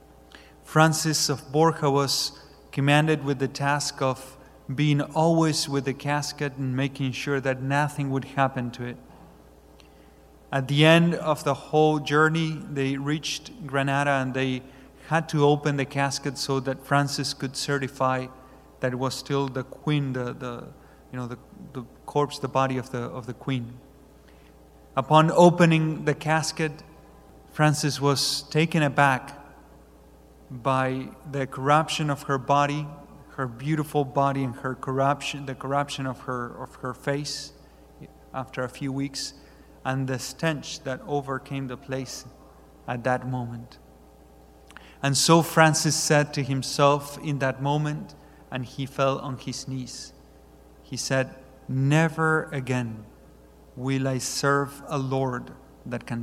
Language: English